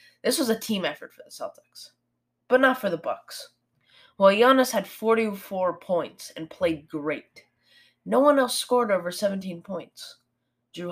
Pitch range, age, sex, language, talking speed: 165-215 Hz, 20-39, female, English, 160 wpm